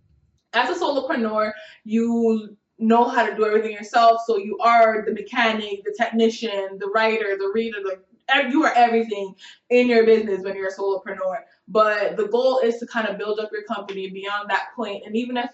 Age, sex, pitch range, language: 20-39, female, 200-235 Hz, English